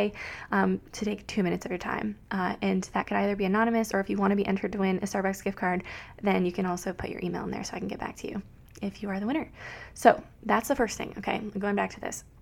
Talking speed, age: 285 wpm, 20-39